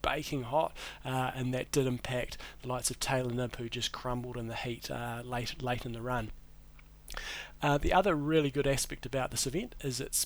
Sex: male